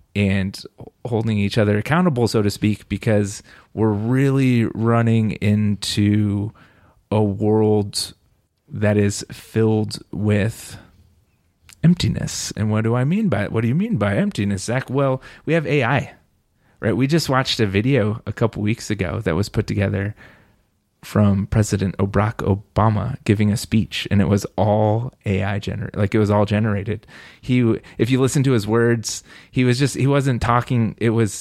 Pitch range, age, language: 100-120 Hz, 30-49, English